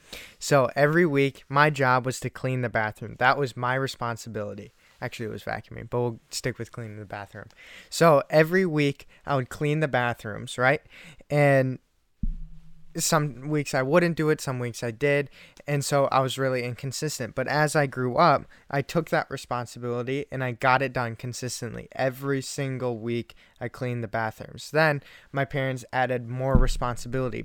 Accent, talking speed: American, 175 wpm